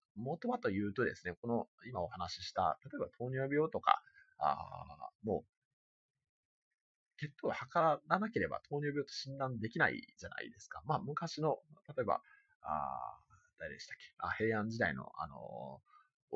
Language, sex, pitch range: Japanese, male, 95-160 Hz